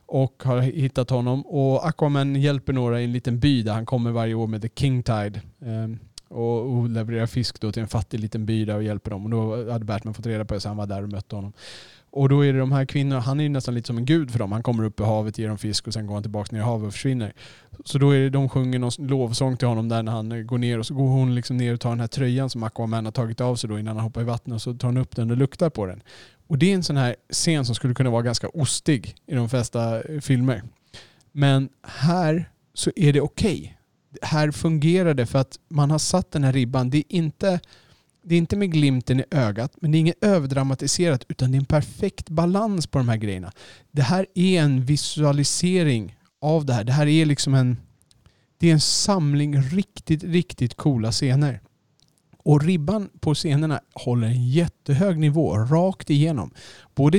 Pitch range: 115-145 Hz